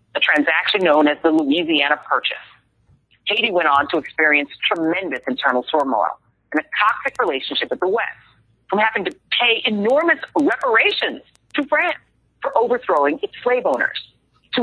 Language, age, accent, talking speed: English, 40-59, American, 150 wpm